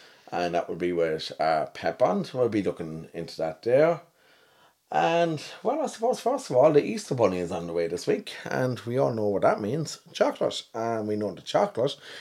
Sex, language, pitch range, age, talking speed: male, English, 90-140 Hz, 30-49, 200 wpm